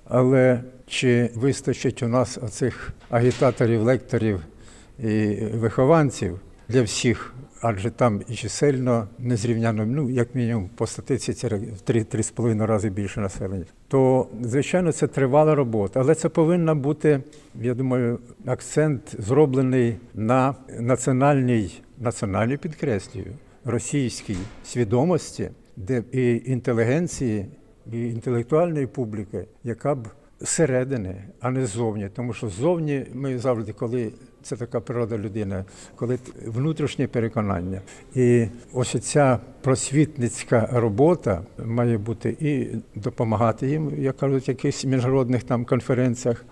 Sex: male